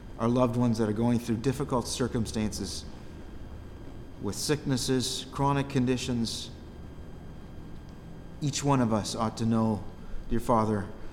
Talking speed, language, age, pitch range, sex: 120 wpm, English, 40-59, 105-125 Hz, male